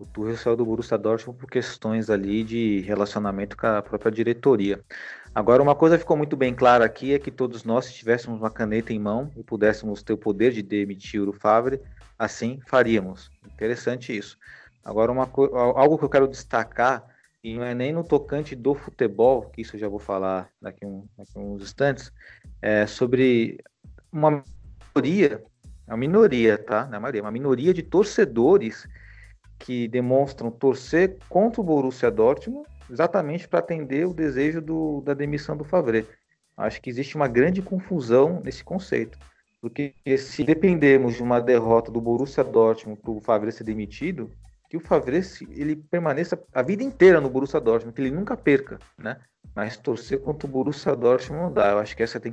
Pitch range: 110-140 Hz